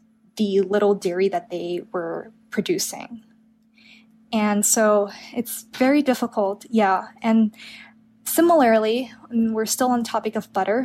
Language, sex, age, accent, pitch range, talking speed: English, female, 10-29, American, 205-235 Hz, 115 wpm